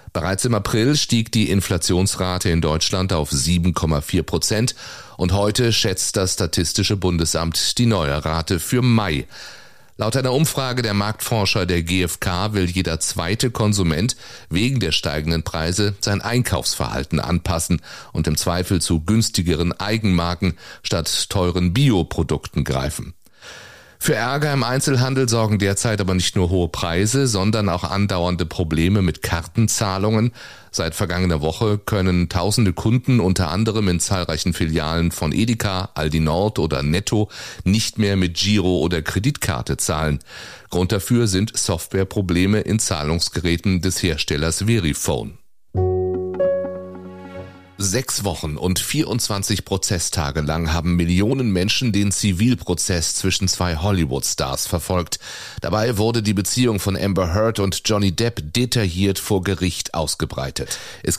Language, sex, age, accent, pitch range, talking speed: German, male, 30-49, German, 85-110 Hz, 125 wpm